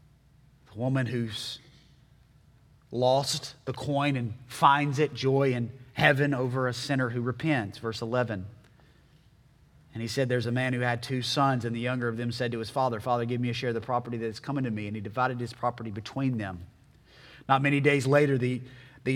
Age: 30-49